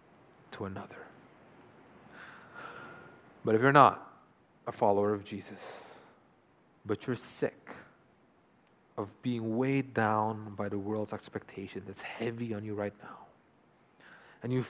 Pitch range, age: 110-135 Hz, 30-49